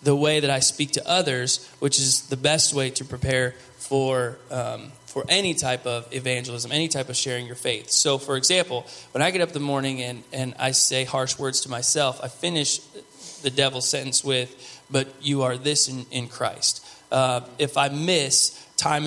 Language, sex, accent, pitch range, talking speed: English, male, American, 130-145 Hz, 200 wpm